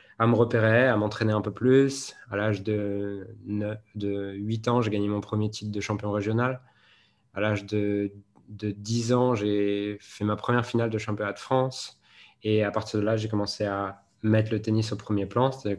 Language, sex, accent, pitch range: French, male, French, 105-115 Hz